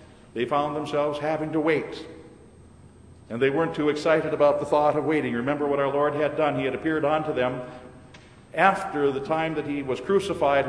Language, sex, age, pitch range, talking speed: English, male, 50-69, 145-180 Hz, 190 wpm